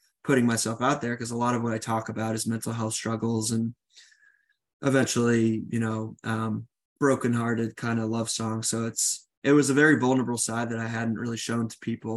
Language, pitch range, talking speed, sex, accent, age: English, 115-130 Hz, 205 wpm, male, American, 20-39